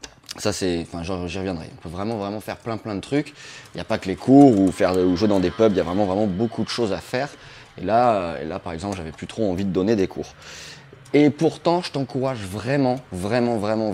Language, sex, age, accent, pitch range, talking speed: French, male, 20-39, French, 100-135 Hz, 255 wpm